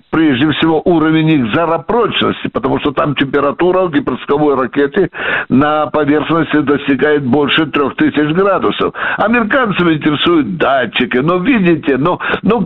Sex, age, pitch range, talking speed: male, 60-79, 145-195 Hz, 120 wpm